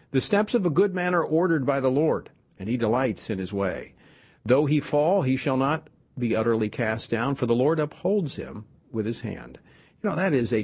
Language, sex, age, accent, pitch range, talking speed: English, male, 50-69, American, 120-160 Hz, 225 wpm